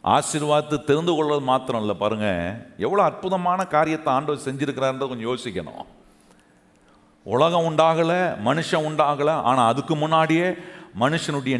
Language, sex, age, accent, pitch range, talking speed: Tamil, male, 40-59, native, 135-180 Hz, 110 wpm